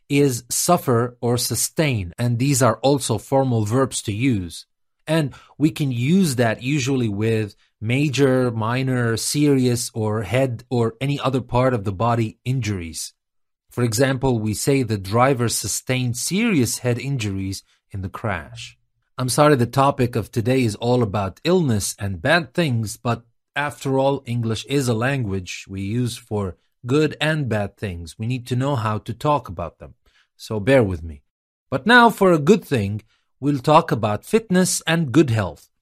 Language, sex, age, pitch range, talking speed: English, male, 30-49, 110-145 Hz, 165 wpm